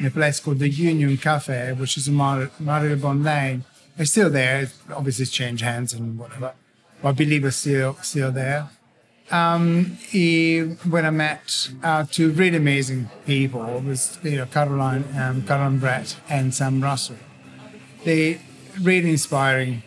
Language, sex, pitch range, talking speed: English, male, 135-160 Hz, 165 wpm